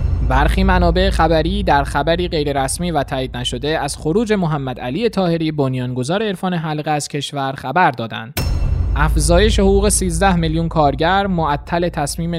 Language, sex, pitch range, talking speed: Persian, male, 140-180 Hz, 135 wpm